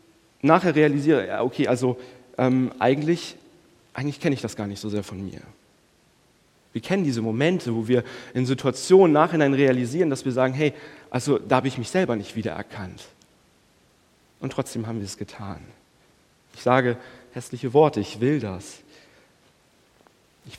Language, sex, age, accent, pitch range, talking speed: German, male, 40-59, German, 120-155 Hz, 155 wpm